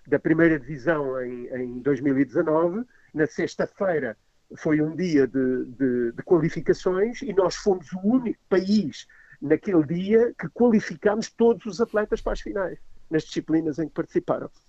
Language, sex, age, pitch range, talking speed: Portuguese, male, 50-69, 135-170 Hz, 145 wpm